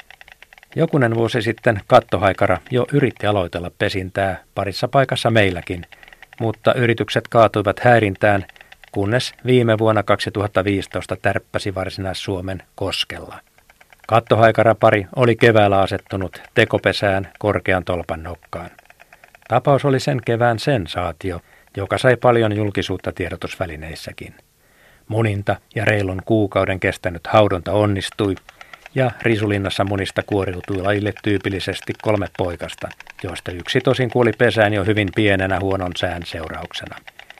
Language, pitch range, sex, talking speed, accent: Finnish, 95-115 Hz, male, 105 wpm, native